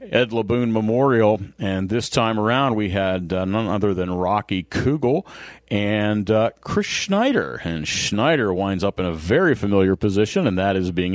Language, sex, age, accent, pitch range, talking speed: English, male, 50-69, American, 95-120 Hz, 170 wpm